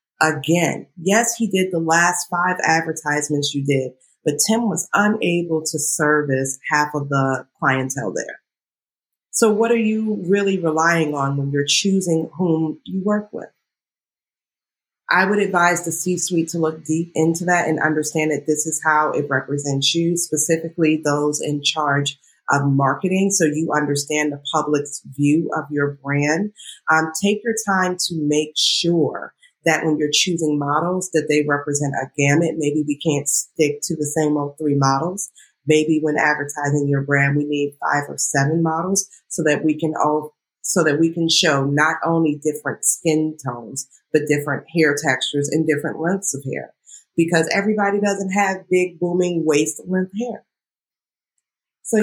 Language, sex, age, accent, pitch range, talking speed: English, female, 30-49, American, 145-175 Hz, 165 wpm